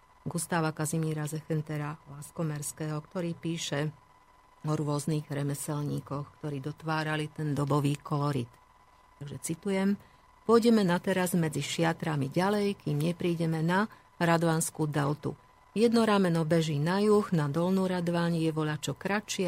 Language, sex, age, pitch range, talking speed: Slovak, female, 50-69, 150-180 Hz, 120 wpm